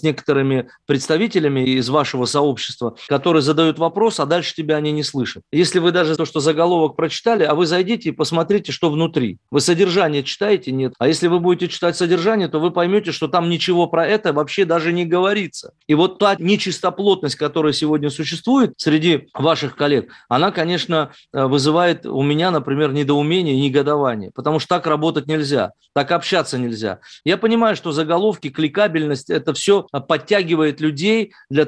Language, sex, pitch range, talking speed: Russian, male, 150-190 Hz, 165 wpm